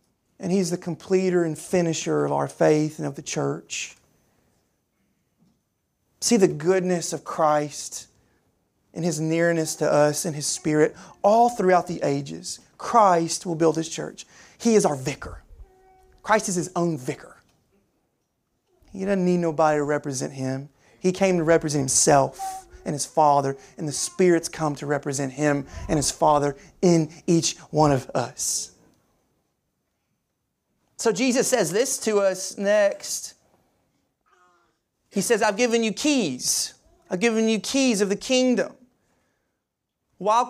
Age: 30-49